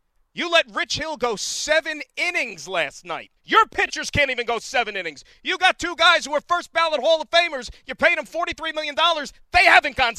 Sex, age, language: male, 40-59, English